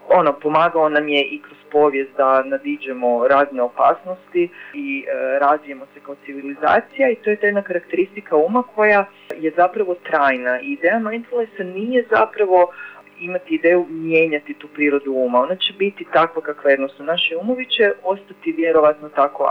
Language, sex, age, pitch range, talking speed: Croatian, female, 30-49, 145-210 Hz, 150 wpm